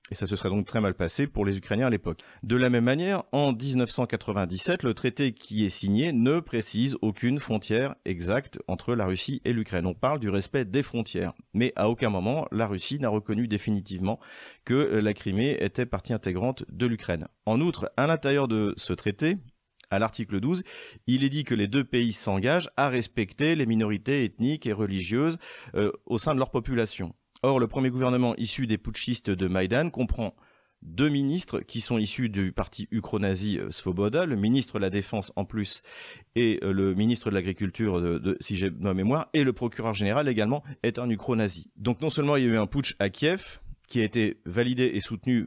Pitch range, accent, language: 100-130 Hz, French, French